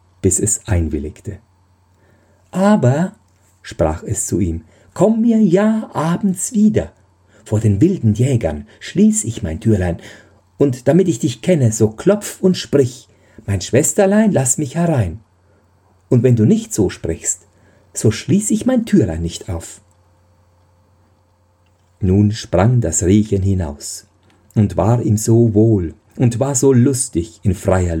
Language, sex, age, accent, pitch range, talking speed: German, male, 50-69, German, 90-115 Hz, 135 wpm